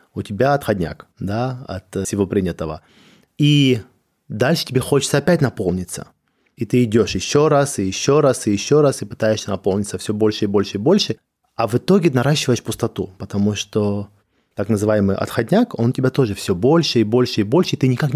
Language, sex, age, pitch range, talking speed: Russian, male, 20-39, 105-130 Hz, 185 wpm